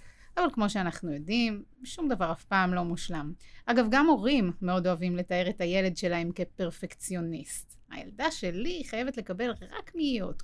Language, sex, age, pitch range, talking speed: Hebrew, female, 30-49, 180-230 Hz, 150 wpm